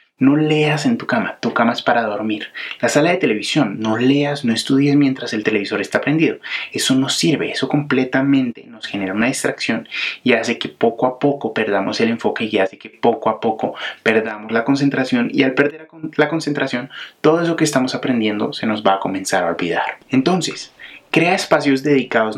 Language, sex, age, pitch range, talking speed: Spanish, male, 30-49, 115-150 Hz, 190 wpm